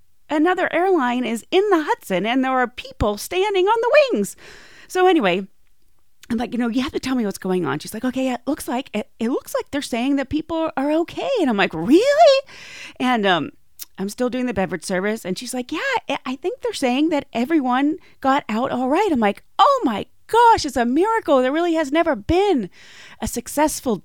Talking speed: 210 wpm